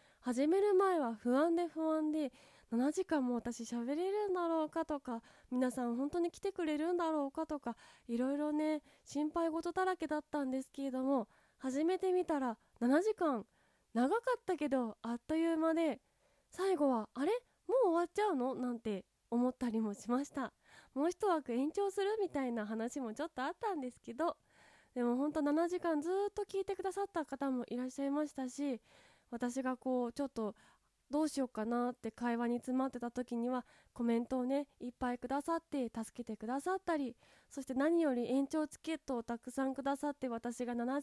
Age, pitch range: 20-39, 245-330 Hz